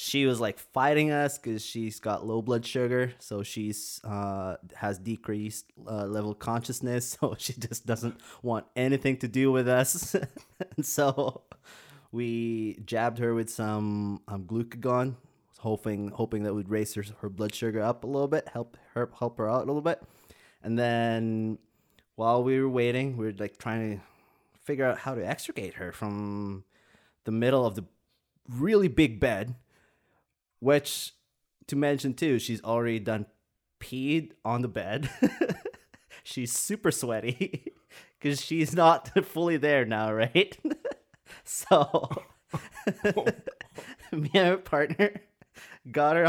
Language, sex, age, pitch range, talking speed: English, male, 20-39, 110-140 Hz, 150 wpm